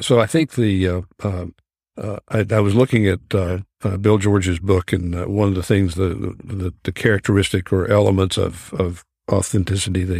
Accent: American